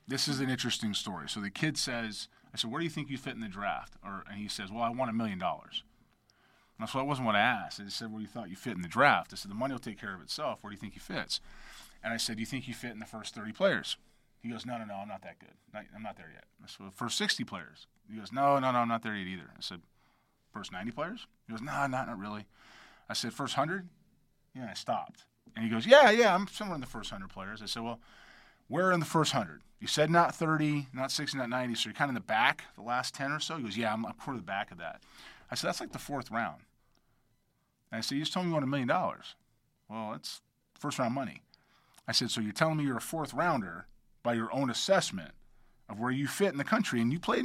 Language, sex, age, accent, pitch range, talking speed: English, male, 30-49, American, 115-150 Hz, 285 wpm